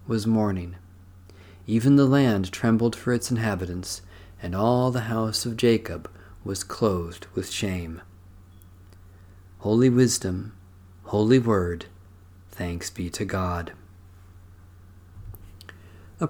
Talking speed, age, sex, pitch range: 105 wpm, 40-59, male, 90-125 Hz